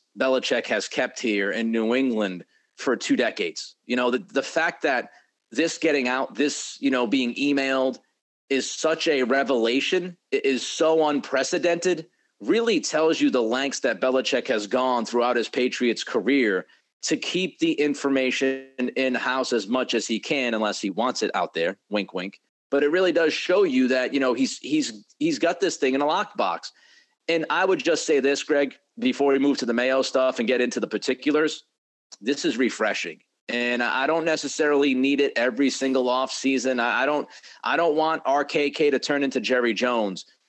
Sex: male